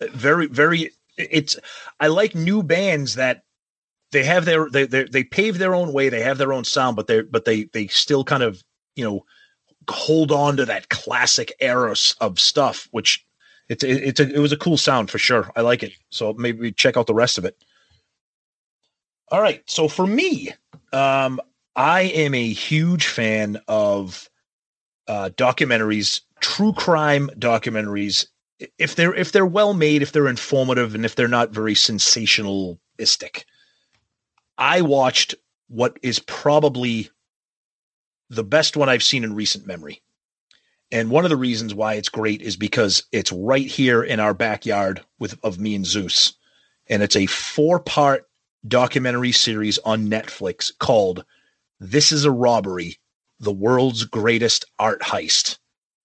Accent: American